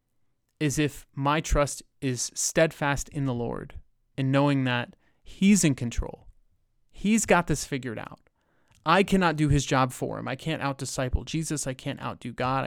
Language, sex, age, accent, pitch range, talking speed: English, male, 30-49, American, 125-150 Hz, 175 wpm